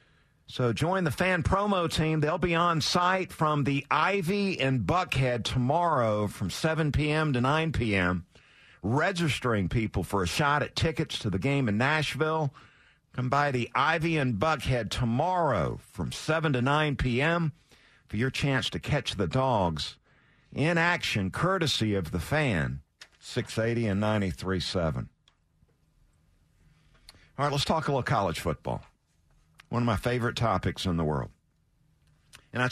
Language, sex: English, male